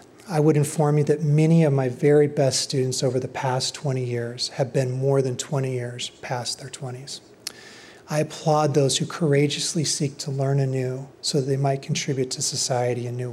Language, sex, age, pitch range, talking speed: English, male, 40-59, 130-150 Hz, 195 wpm